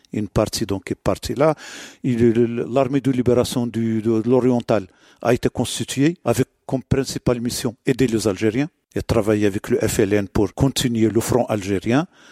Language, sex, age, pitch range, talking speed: French, male, 50-69, 110-130 Hz, 150 wpm